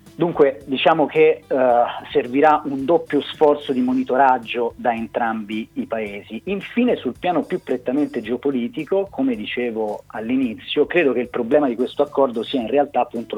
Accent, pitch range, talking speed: native, 115-150 Hz, 155 wpm